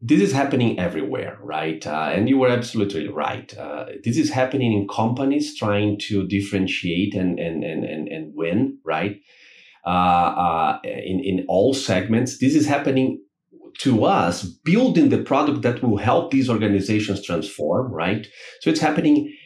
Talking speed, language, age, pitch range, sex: 155 wpm, English, 30-49, 100-125 Hz, male